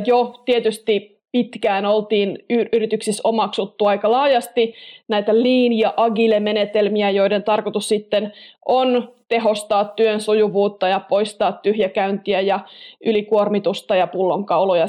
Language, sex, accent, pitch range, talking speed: Finnish, female, native, 205-240 Hz, 105 wpm